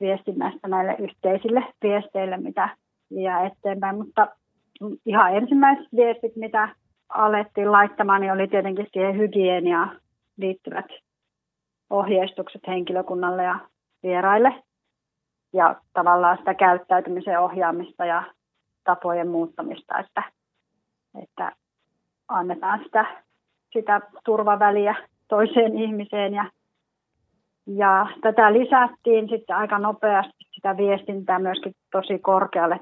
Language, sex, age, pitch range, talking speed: Finnish, female, 30-49, 185-210 Hz, 95 wpm